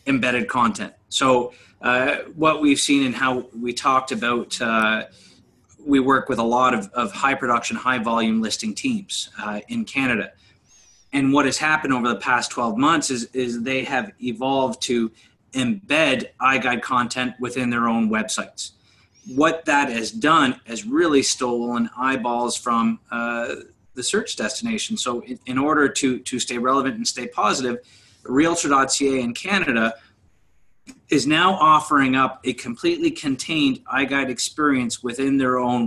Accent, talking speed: American, 150 wpm